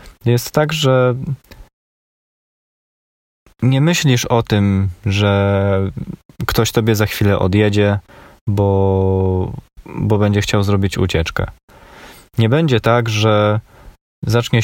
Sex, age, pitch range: male, 20-39, 100-120 Hz